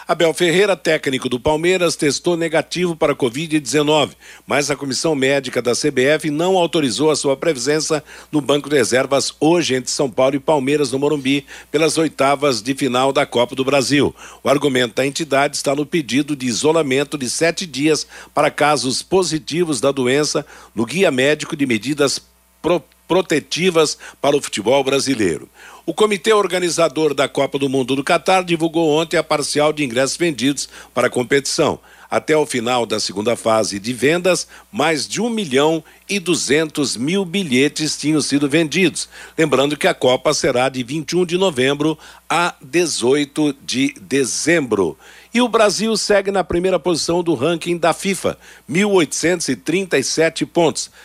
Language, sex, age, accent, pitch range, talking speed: Portuguese, male, 60-79, Brazilian, 135-175 Hz, 155 wpm